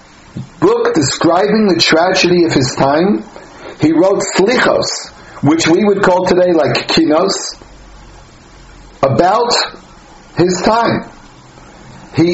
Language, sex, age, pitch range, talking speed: English, male, 60-79, 150-190 Hz, 100 wpm